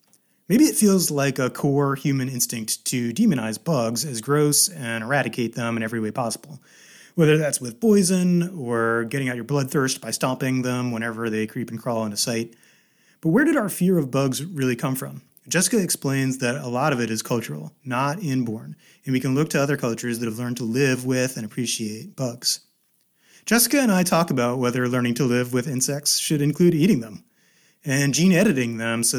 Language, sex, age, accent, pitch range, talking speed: English, male, 30-49, American, 120-155 Hz, 195 wpm